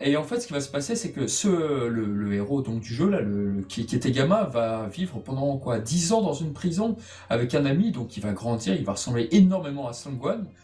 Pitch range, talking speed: 125-190 Hz, 255 wpm